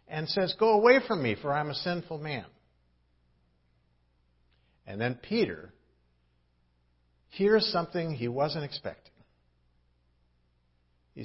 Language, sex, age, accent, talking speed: English, male, 60-79, American, 105 wpm